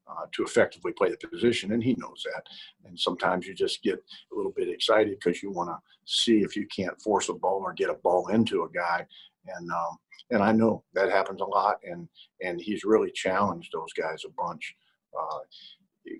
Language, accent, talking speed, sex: English, American, 210 wpm, male